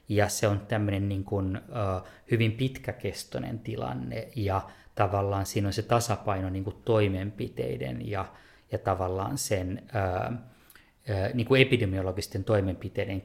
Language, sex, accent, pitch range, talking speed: Finnish, male, native, 100-115 Hz, 120 wpm